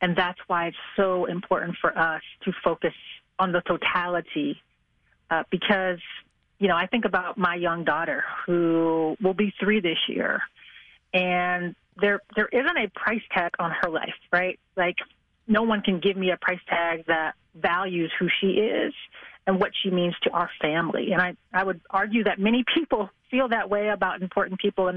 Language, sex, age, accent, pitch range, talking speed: English, female, 30-49, American, 175-205 Hz, 185 wpm